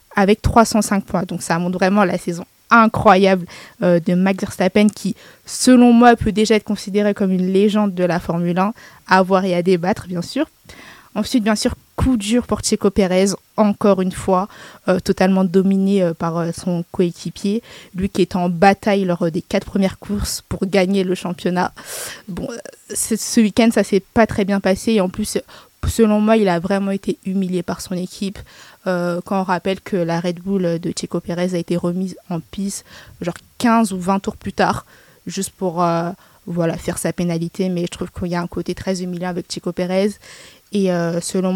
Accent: French